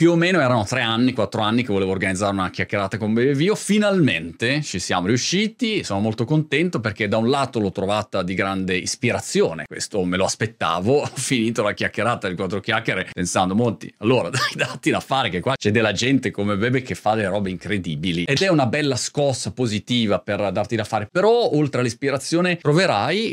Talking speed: 195 wpm